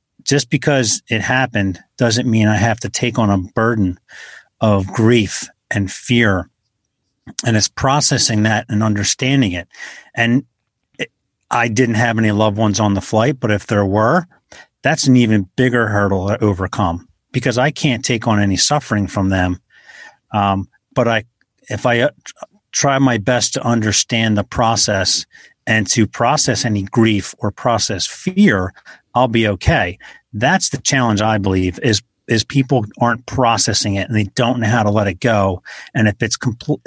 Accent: American